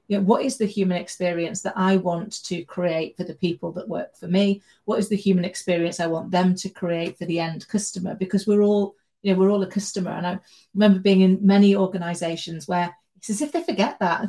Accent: British